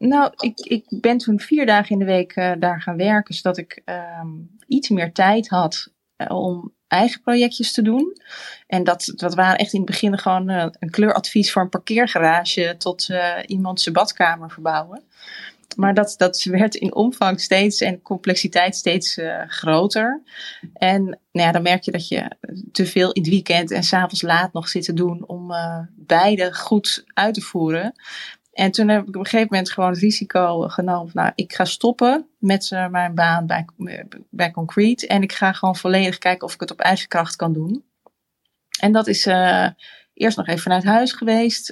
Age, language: 20-39, Dutch